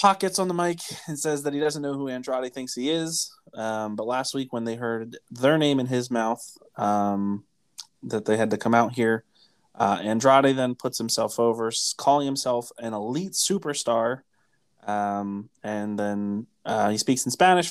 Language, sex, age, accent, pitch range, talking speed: English, male, 20-39, American, 110-140 Hz, 185 wpm